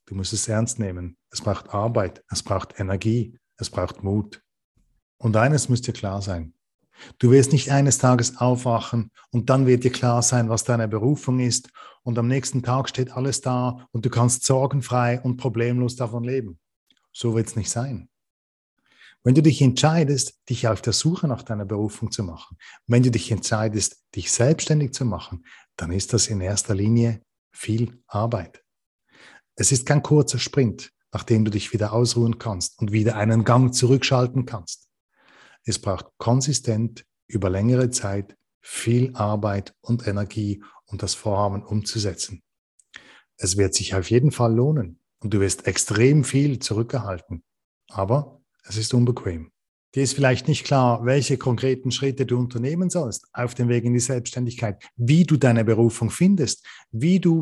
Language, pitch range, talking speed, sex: German, 110-130 Hz, 165 wpm, male